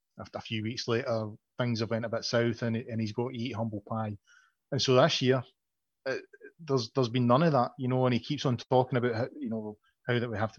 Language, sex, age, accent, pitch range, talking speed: English, male, 30-49, British, 115-135 Hz, 260 wpm